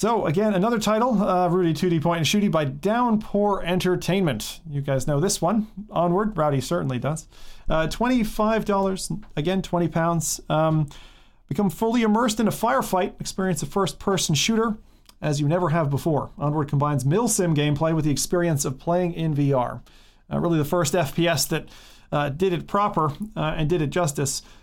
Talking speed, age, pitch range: 170 wpm, 40-59, 145-195 Hz